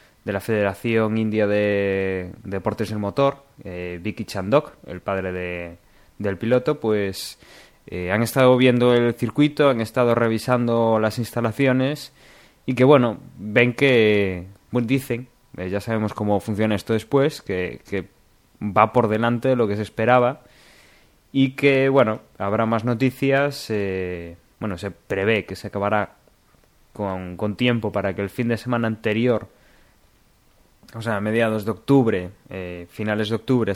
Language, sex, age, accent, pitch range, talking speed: Spanish, male, 20-39, Spanish, 100-120 Hz, 155 wpm